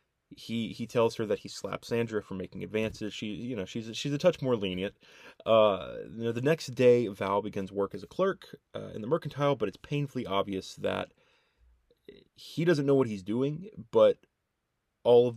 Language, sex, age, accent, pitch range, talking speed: English, male, 20-39, American, 100-125 Hz, 200 wpm